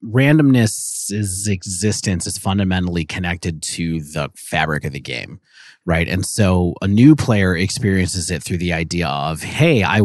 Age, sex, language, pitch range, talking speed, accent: 30-49, male, English, 85-105 Hz, 155 wpm, American